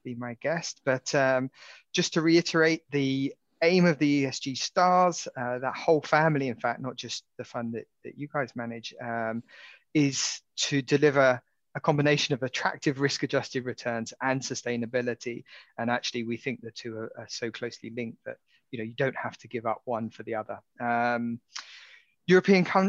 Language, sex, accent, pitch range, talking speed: English, male, British, 120-145 Hz, 175 wpm